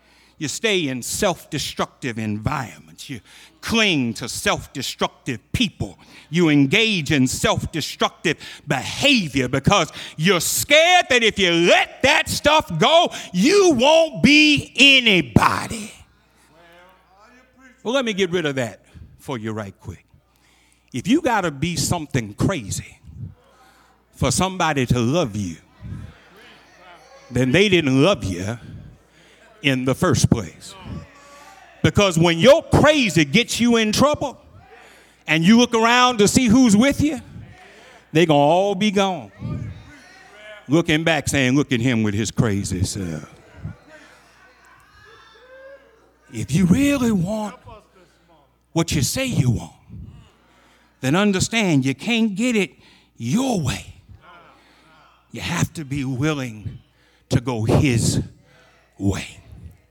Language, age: English, 60-79